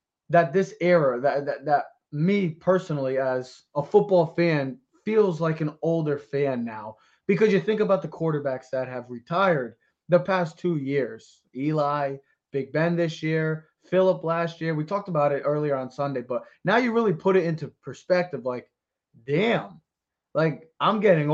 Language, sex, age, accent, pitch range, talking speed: English, male, 20-39, American, 135-175 Hz, 165 wpm